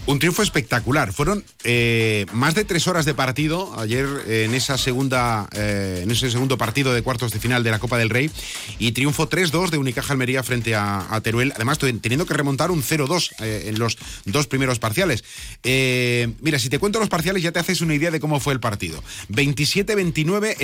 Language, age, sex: Spanish, 30-49, male